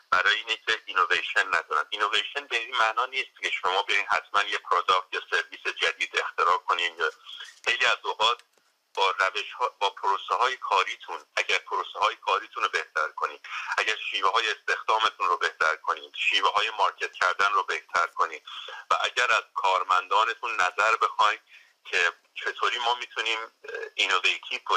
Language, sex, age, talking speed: Persian, male, 40-59, 145 wpm